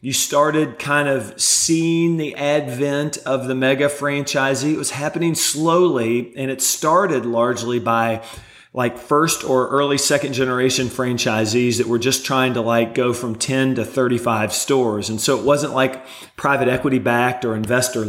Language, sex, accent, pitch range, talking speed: English, male, American, 115-135 Hz, 165 wpm